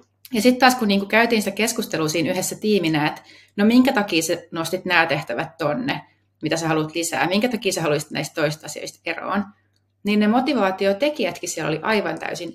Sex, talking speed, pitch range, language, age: female, 180 wpm, 160-240 Hz, Finnish, 30-49